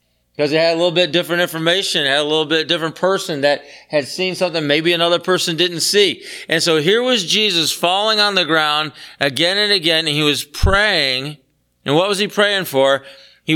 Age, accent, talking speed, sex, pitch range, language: 40-59, American, 205 wpm, male, 140-190 Hz, English